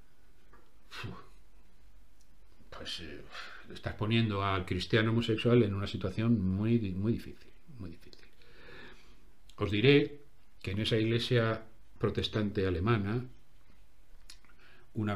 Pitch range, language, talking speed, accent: 95-115 Hz, Spanish, 85 wpm, Spanish